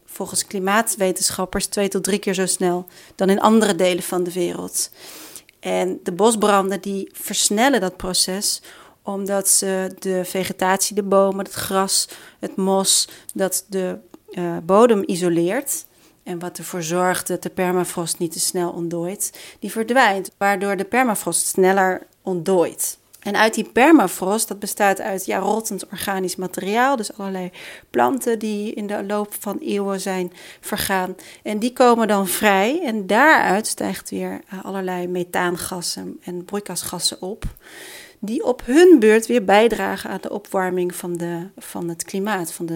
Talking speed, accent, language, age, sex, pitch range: 145 wpm, Dutch, Dutch, 40-59, female, 180-215 Hz